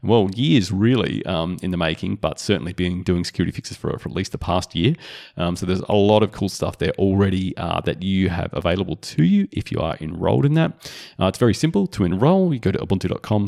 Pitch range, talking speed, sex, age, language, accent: 90-125 Hz, 235 wpm, male, 30-49, English, Australian